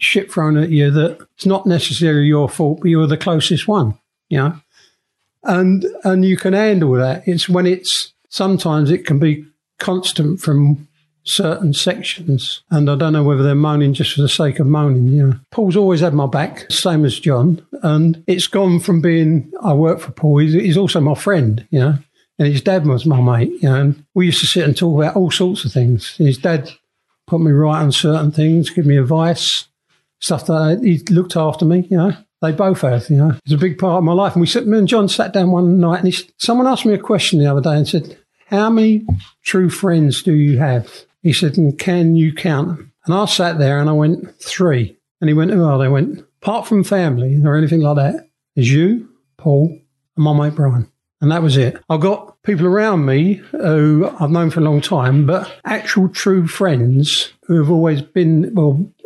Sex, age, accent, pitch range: male, 60-79, British, 145-180 Hz